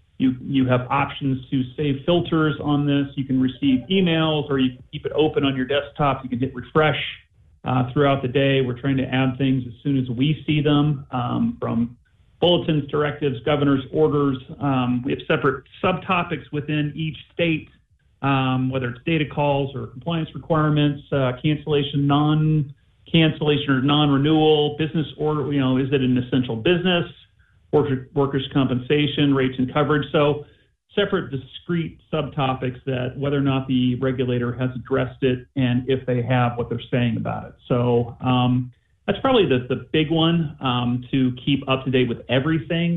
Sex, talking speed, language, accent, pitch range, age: male, 170 wpm, English, American, 125-150 Hz, 40-59